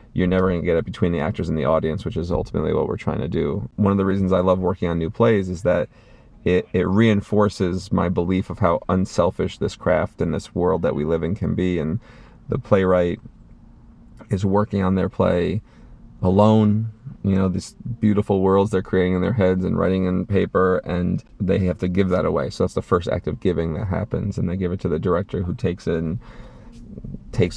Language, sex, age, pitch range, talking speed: English, male, 30-49, 90-100 Hz, 220 wpm